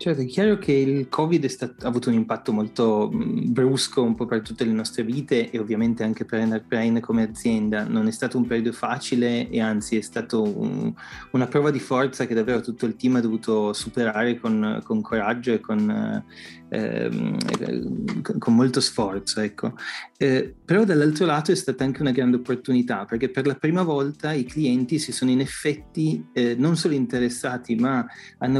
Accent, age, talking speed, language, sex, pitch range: native, 30-49, 185 wpm, Italian, male, 120-150 Hz